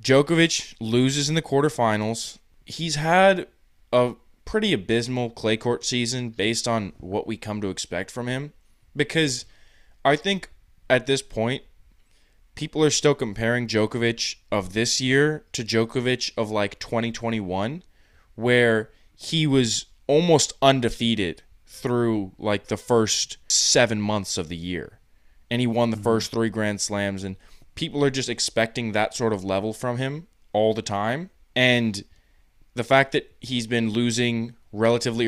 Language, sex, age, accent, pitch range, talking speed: English, male, 20-39, American, 105-125 Hz, 145 wpm